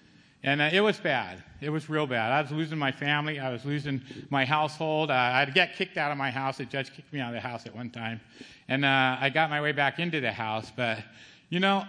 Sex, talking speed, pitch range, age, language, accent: male, 255 wpm, 150-205 Hz, 50-69, English, American